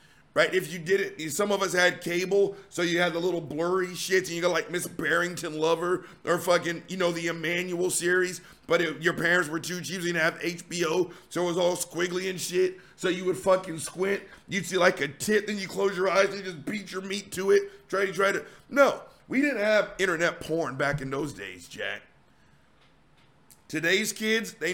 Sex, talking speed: male, 220 wpm